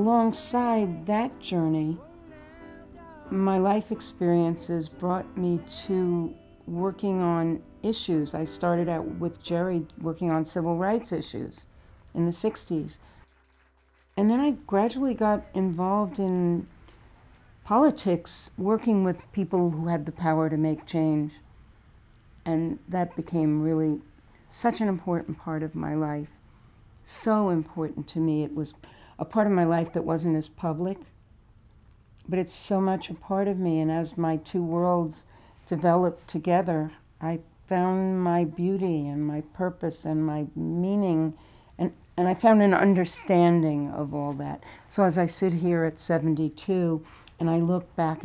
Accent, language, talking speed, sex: American, English, 140 wpm, female